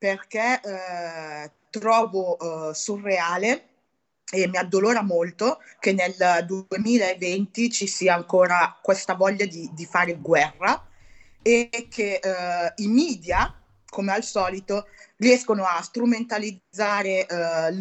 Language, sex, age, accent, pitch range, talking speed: Italian, female, 20-39, native, 180-225 Hz, 110 wpm